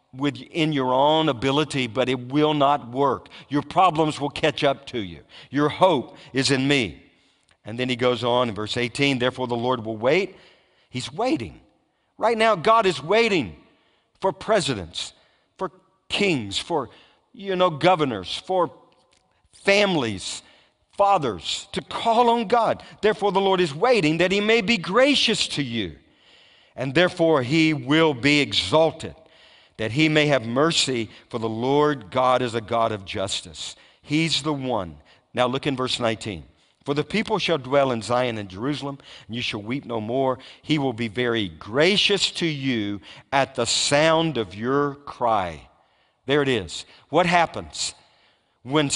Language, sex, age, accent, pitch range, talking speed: English, male, 50-69, American, 120-160 Hz, 160 wpm